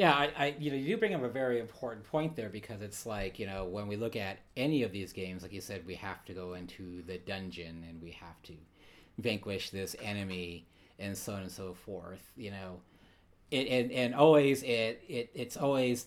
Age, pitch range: 40-59, 95-115 Hz